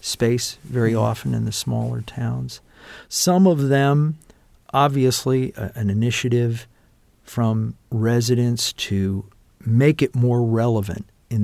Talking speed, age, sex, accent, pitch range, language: 115 wpm, 50-69, male, American, 105-135 Hz, English